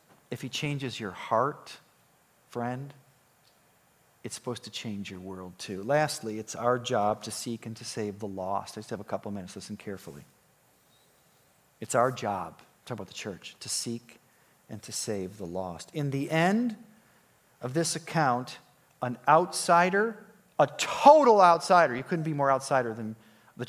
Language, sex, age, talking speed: English, male, 40-59, 165 wpm